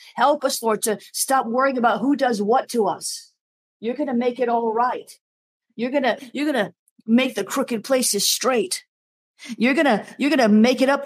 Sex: female